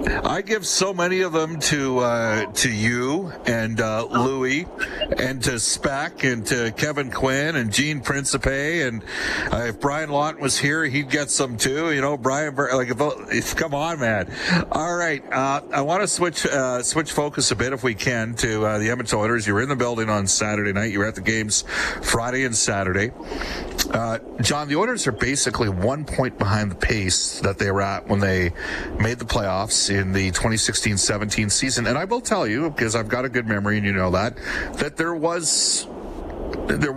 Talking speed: 200 wpm